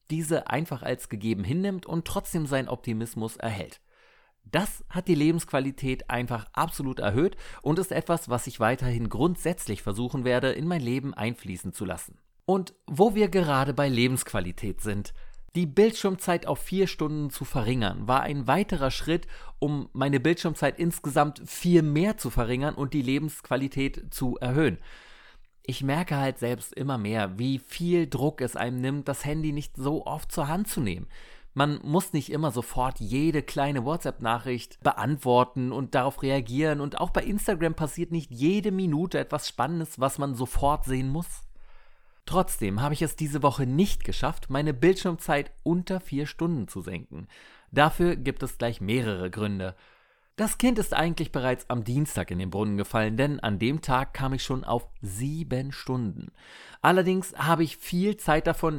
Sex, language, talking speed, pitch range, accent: male, German, 165 wpm, 125-165 Hz, German